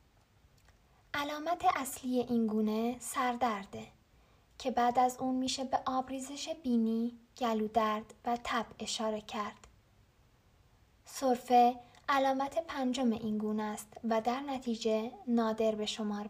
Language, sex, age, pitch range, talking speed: Persian, female, 10-29, 225-270 Hz, 110 wpm